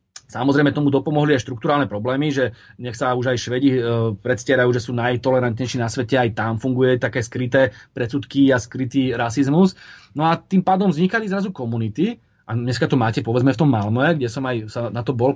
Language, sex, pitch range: Slovak, male, 125-165 Hz